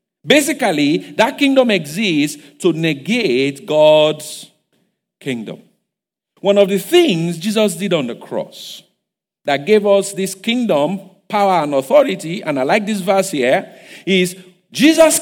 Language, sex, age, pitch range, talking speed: English, male, 50-69, 150-225 Hz, 130 wpm